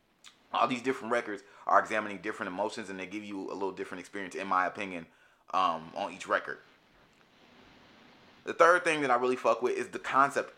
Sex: male